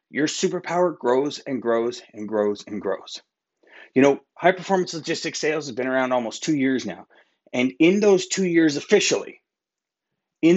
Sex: male